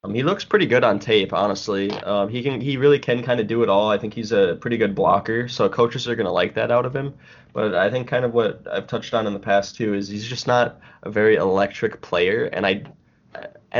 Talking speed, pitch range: 255 wpm, 105-125 Hz